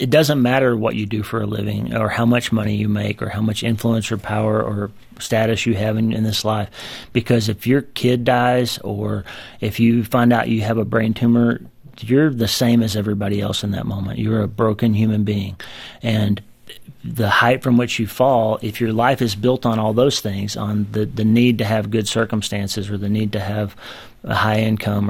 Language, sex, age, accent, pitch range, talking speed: English, male, 30-49, American, 105-120 Hz, 215 wpm